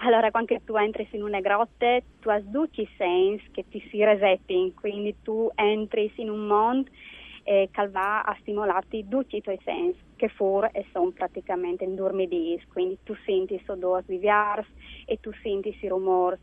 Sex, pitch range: female, 195-240 Hz